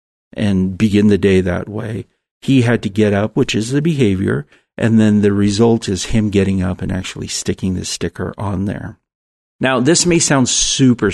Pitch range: 100-120 Hz